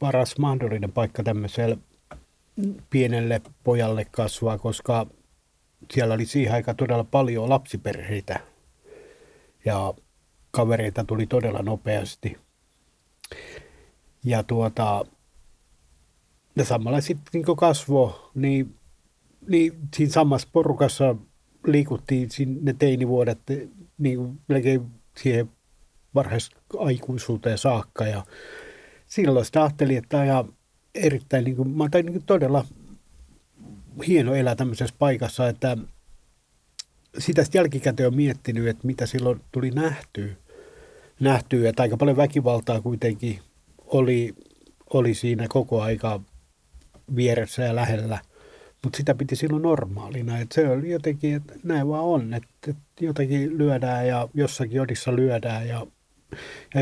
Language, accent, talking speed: Finnish, native, 100 wpm